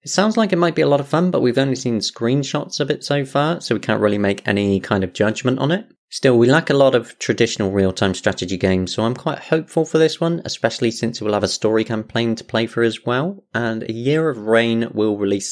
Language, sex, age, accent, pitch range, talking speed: English, male, 30-49, British, 95-130 Hz, 255 wpm